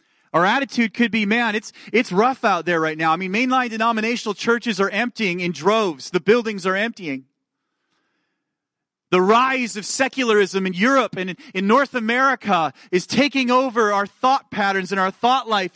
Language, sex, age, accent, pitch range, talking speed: English, male, 30-49, American, 165-235 Hz, 170 wpm